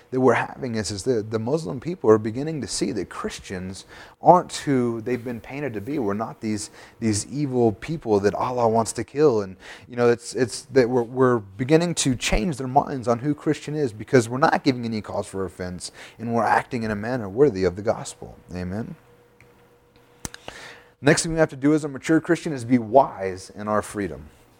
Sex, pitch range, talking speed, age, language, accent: male, 105-130 Hz, 205 wpm, 30-49, English, American